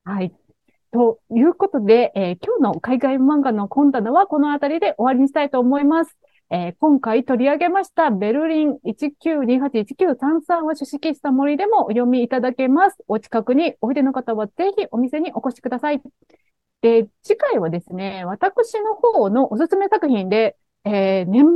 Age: 30-49